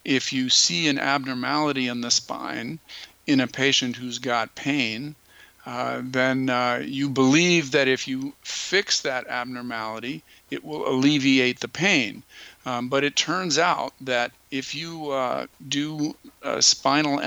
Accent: American